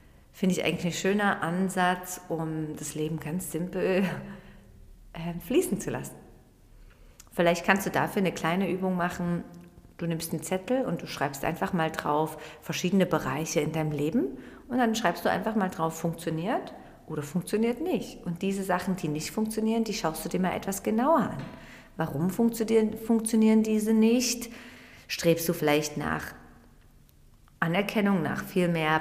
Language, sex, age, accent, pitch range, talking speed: German, female, 40-59, German, 160-220 Hz, 155 wpm